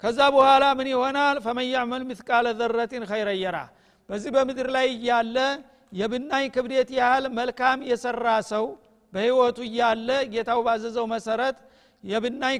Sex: male